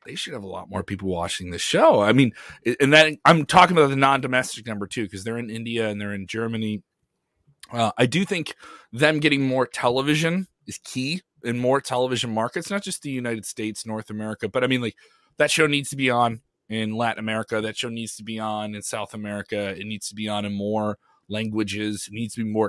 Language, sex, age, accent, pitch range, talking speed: English, male, 30-49, American, 110-145 Hz, 225 wpm